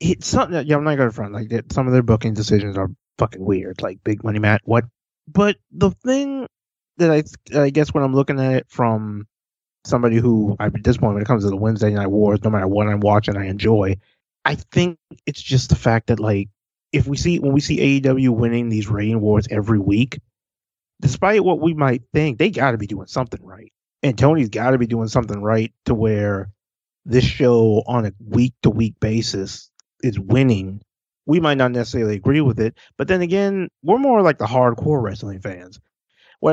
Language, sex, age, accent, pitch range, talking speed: English, male, 20-39, American, 105-135 Hz, 205 wpm